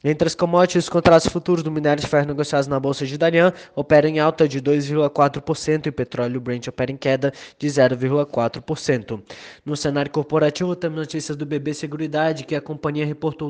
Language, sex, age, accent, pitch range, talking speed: Portuguese, male, 20-39, Brazilian, 130-150 Hz, 180 wpm